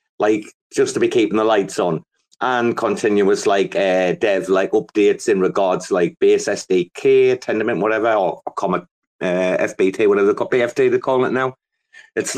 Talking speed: 160 wpm